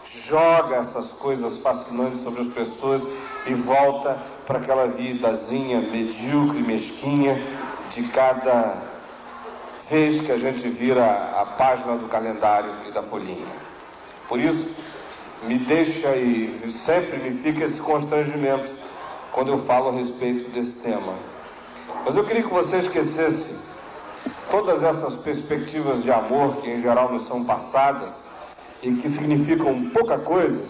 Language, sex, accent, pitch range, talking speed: Portuguese, male, Brazilian, 130-180 Hz, 130 wpm